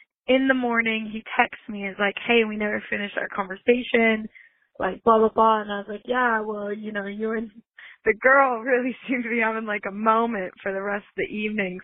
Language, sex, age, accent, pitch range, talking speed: English, female, 20-39, American, 205-245 Hz, 230 wpm